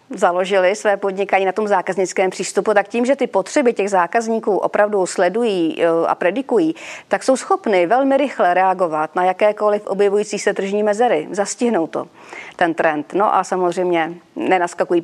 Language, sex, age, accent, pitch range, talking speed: Czech, female, 40-59, native, 180-230 Hz, 150 wpm